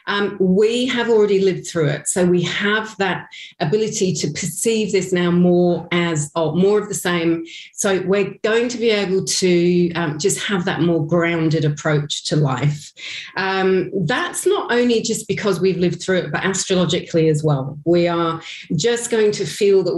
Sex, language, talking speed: female, English, 175 wpm